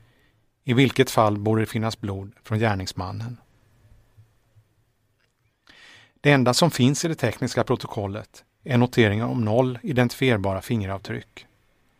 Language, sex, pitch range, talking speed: Swedish, male, 110-125 Hz, 115 wpm